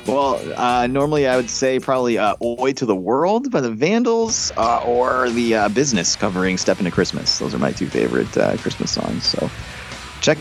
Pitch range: 100-130 Hz